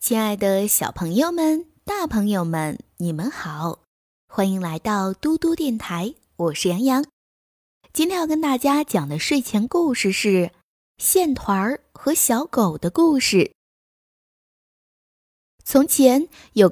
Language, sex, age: Chinese, female, 20-39